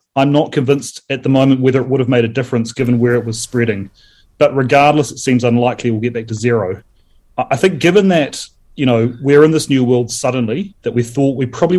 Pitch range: 120-145 Hz